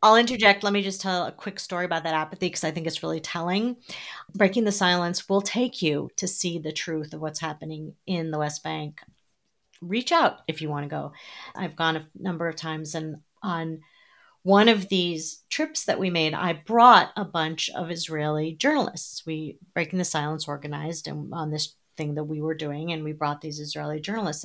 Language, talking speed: English, 205 wpm